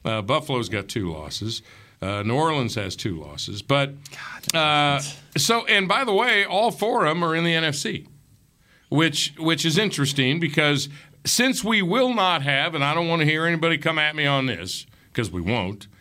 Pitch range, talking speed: 120-165 Hz, 190 wpm